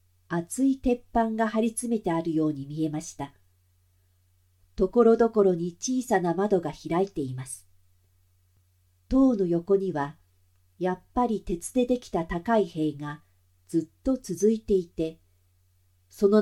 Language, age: Japanese, 50-69